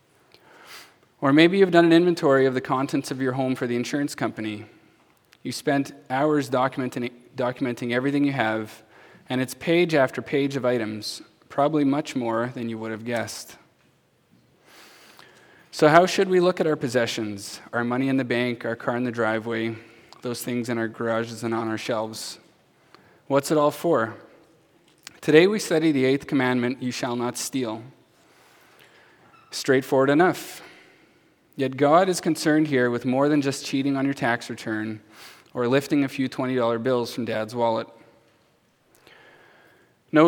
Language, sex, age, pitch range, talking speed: English, male, 20-39, 115-145 Hz, 160 wpm